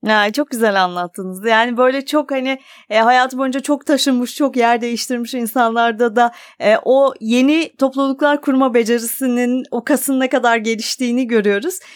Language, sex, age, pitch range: Turkish, female, 30-49, 230-295 Hz